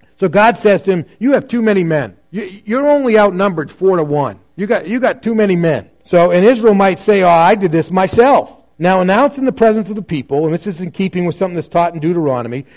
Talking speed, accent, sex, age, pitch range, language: 250 wpm, American, male, 40-59, 155-215 Hz, English